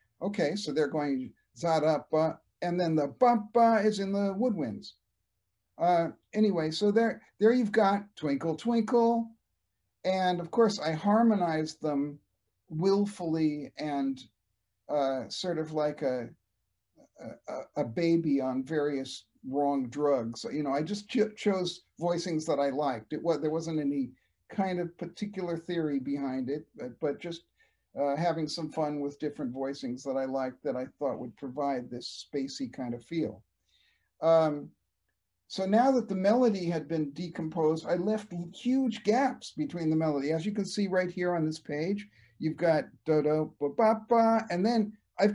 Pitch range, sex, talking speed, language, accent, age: 140-195 Hz, male, 155 wpm, English, American, 50-69